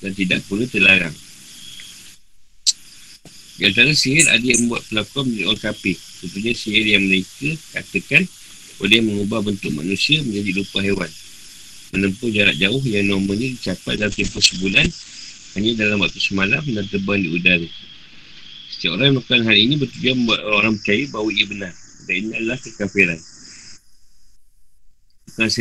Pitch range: 95-115 Hz